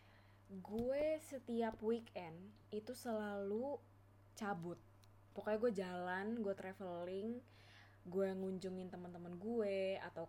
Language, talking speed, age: Indonesian, 100 wpm, 20-39